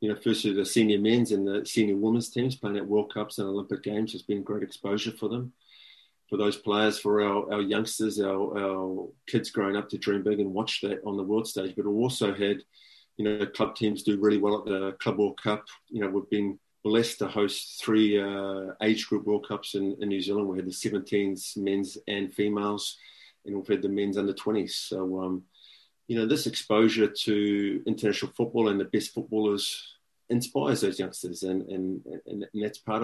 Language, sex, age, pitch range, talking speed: English, male, 30-49, 100-110 Hz, 210 wpm